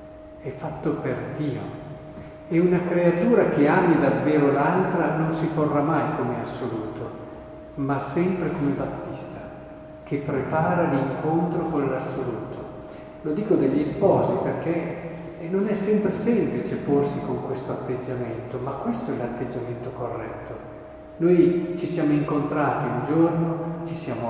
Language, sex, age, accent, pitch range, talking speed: Italian, male, 50-69, native, 135-165 Hz, 130 wpm